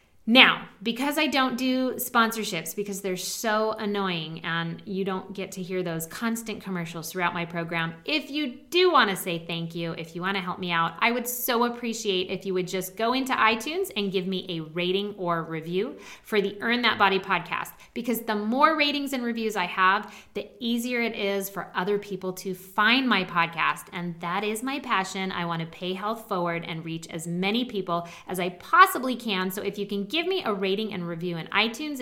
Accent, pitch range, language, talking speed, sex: American, 180-245 Hz, English, 210 wpm, female